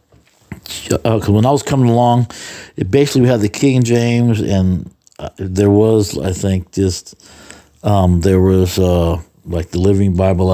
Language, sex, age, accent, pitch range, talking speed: English, male, 60-79, American, 90-115 Hz, 170 wpm